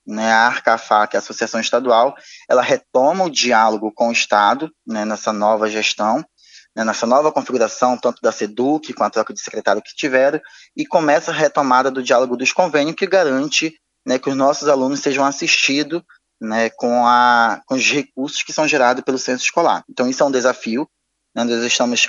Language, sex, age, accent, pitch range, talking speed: Portuguese, male, 20-39, Brazilian, 115-140 Hz, 180 wpm